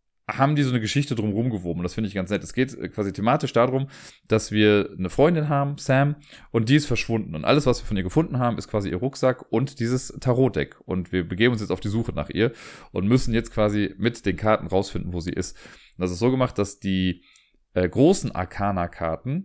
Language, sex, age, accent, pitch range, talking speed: German, male, 30-49, German, 95-130 Hz, 230 wpm